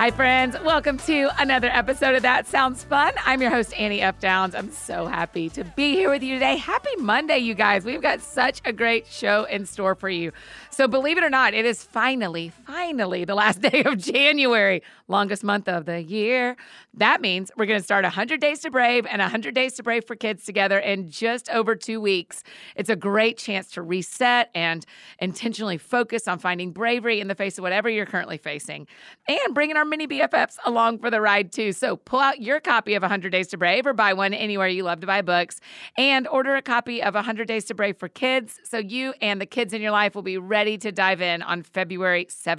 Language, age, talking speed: English, 40-59, 220 wpm